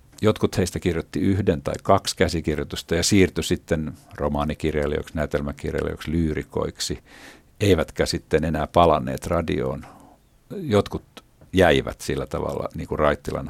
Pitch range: 75-90 Hz